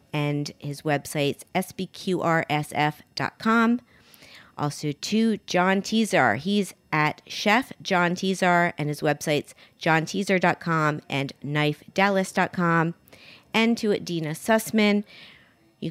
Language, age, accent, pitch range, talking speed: English, 40-59, American, 160-205 Hz, 90 wpm